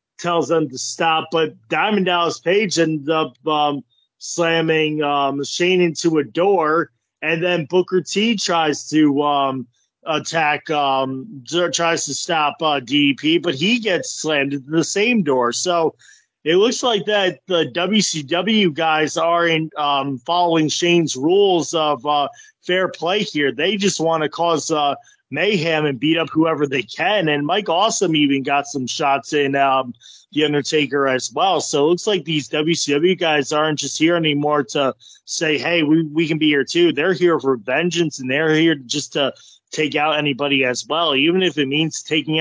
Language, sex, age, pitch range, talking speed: English, male, 30-49, 140-175 Hz, 180 wpm